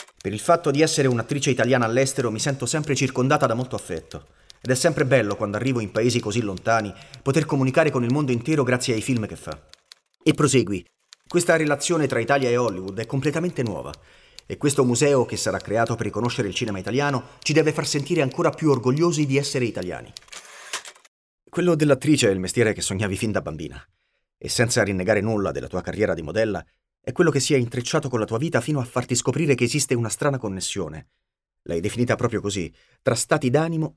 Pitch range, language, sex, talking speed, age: 105-145 Hz, Italian, male, 200 wpm, 30-49